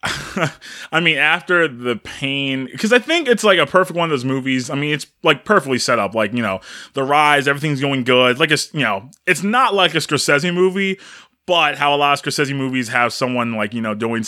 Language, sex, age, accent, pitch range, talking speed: English, male, 20-39, American, 125-185 Hz, 225 wpm